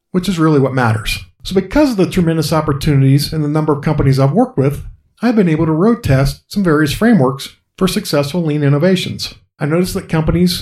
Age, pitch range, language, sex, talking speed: 50-69, 135-180 Hz, English, male, 205 wpm